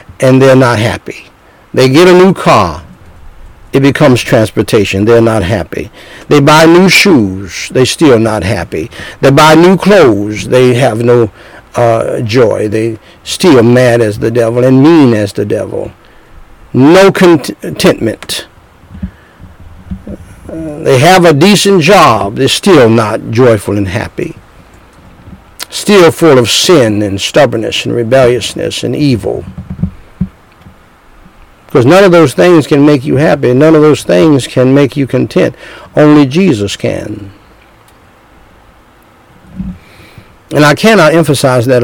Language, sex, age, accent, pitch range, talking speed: English, male, 60-79, American, 105-160 Hz, 130 wpm